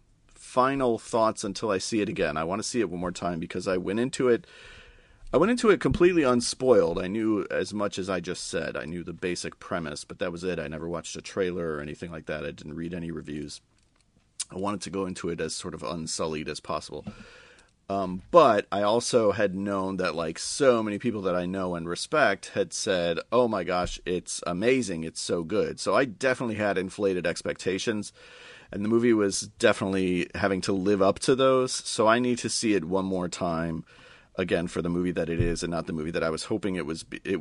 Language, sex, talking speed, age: English, male, 225 wpm, 40-59